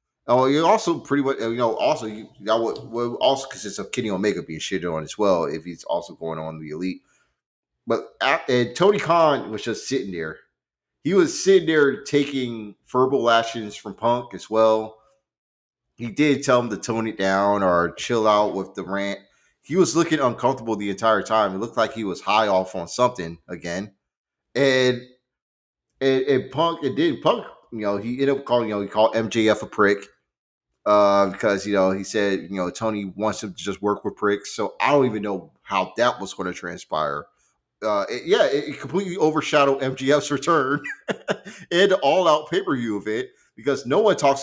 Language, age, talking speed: English, 30-49, 200 wpm